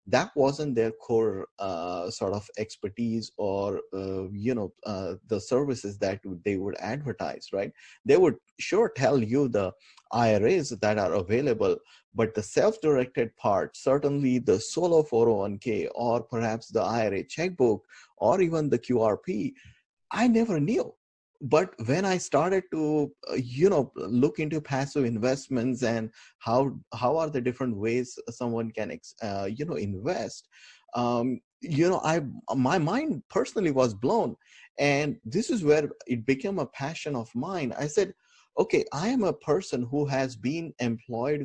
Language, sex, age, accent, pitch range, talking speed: English, male, 30-49, Indian, 115-150 Hz, 150 wpm